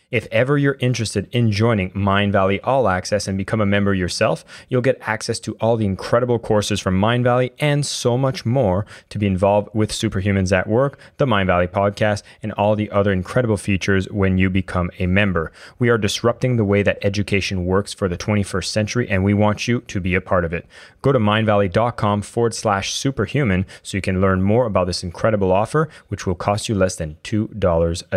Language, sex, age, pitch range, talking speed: English, male, 30-49, 100-120 Hz, 200 wpm